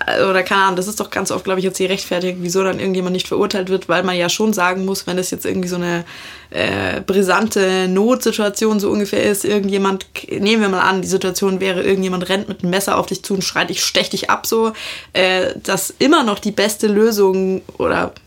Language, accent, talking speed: German, German, 225 wpm